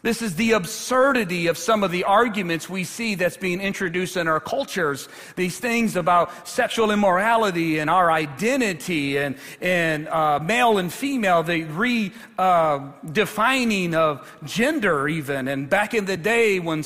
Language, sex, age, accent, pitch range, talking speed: English, male, 40-59, American, 180-230 Hz, 155 wpm